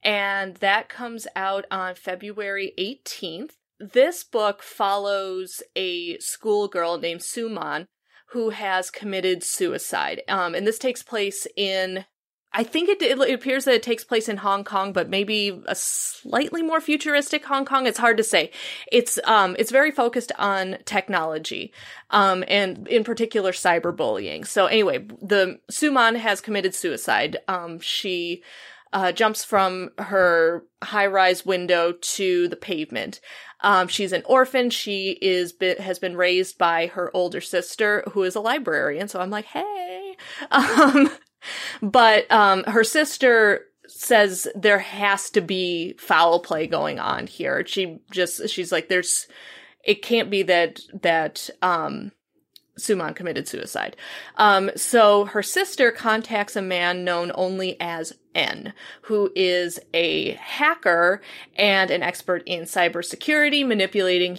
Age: 30-49